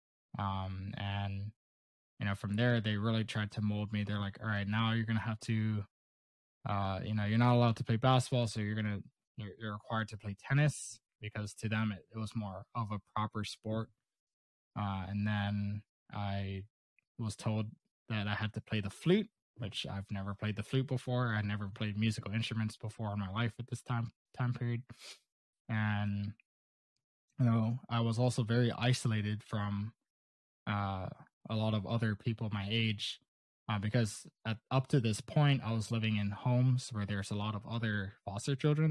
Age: 20-39